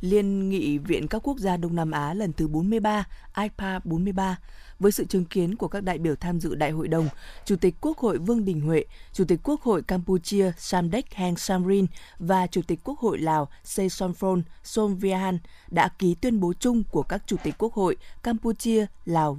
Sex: female